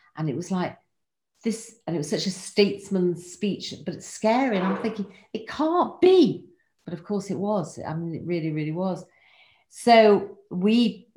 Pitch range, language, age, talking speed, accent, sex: 135-190 Hz, English, 50-69, 185 wpm, British, female